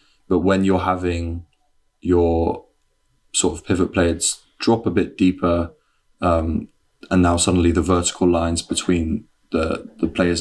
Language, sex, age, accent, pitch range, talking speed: English, male, 20-39, British, 85-95 Hz, 140 wpm